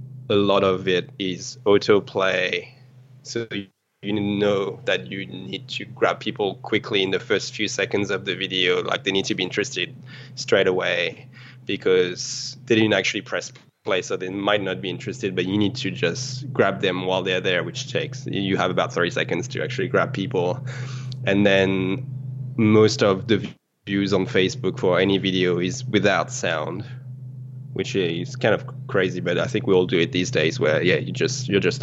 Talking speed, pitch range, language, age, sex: 185 wpm, 95-130 Hz, English, 20-39, male